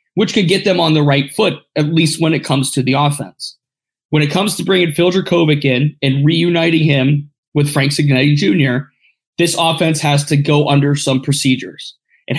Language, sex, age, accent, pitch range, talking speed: English, male, 20-39, American, 135-160 Hz, 195 wpm